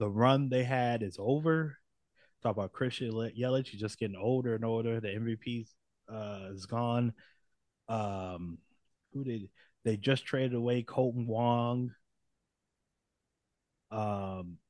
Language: English